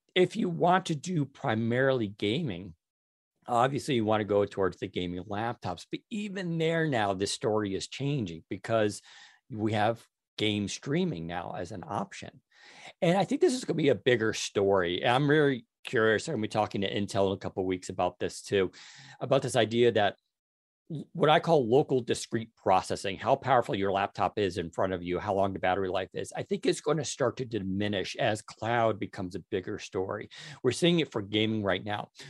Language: English